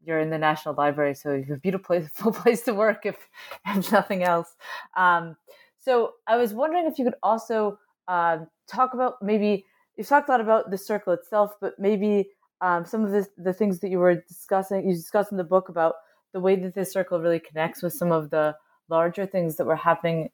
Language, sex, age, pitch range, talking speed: English, female, 30-49, 160-190 Hz, 210 wpm